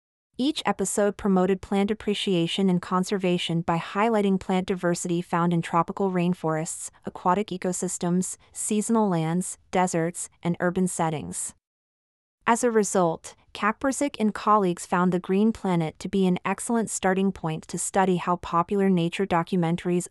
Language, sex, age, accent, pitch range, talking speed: English, female, 30-49, American, 170-205 Hz, 135 wpm